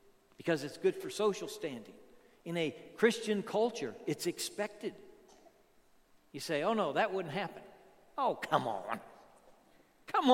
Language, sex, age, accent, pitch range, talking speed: English, male, 60-79, American, 155-250 Hz, 135 wpm